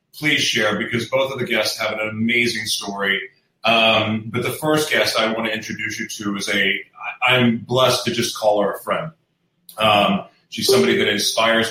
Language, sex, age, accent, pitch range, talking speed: English, male, 30-49, American, 110-135 Hz, 195 wpm